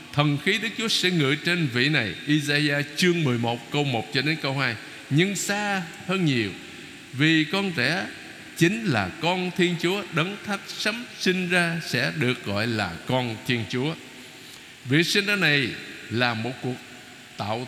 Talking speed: 170 wpm